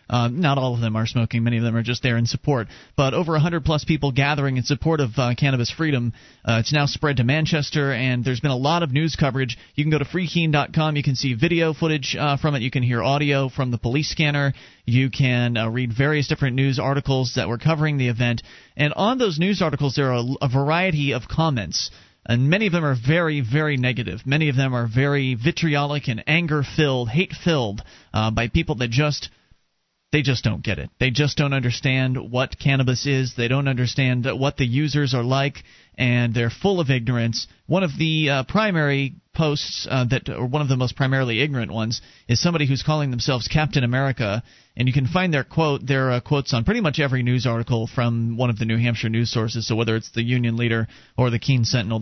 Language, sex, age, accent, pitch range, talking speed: English, male, 30-49, American, 120-150 Hz, 215 wpm